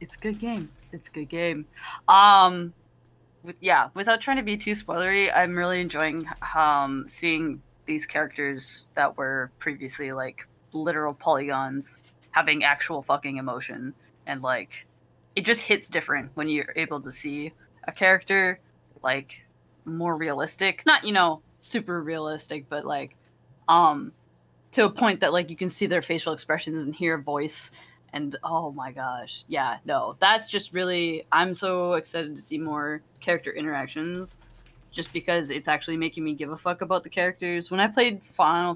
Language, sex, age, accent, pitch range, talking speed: English, female, 20-39, American, 145-185 Hz, 160 wpm